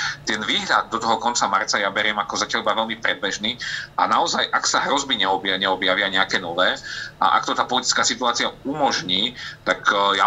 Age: 40-59